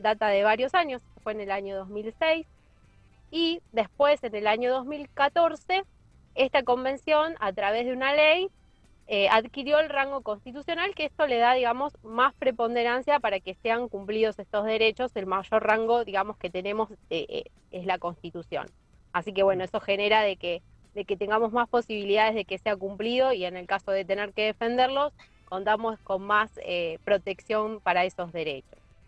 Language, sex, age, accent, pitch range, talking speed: Spanish, female, 20-39, Argentinian, 195-275 Hz, 165 wpm